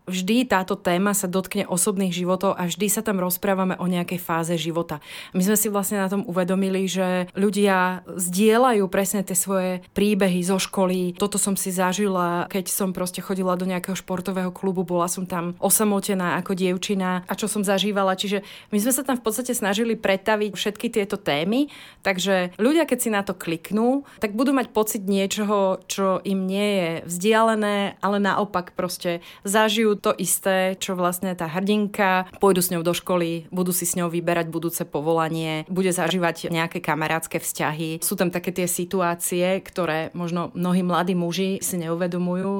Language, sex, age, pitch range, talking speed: Slovak, female, 30-49, 175-200 Hz, 170 wpm